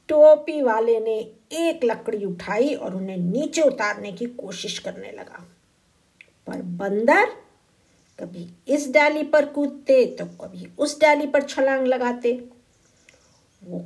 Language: Hindi